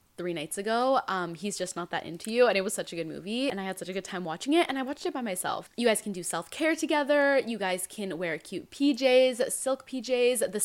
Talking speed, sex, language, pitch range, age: 270 wpm, female, English, 180-260 Hz, 10-29